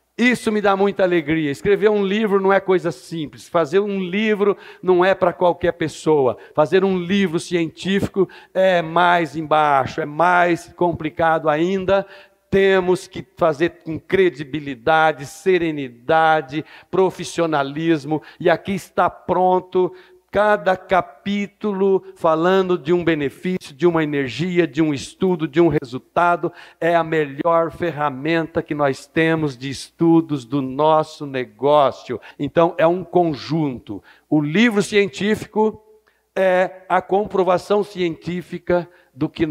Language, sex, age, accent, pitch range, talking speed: Portuguese, male, 60-79, Brazilian, 155-195 Hz, 125 wpm